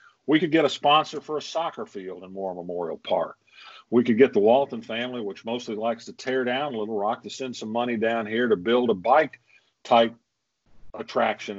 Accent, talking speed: American, 195 wpm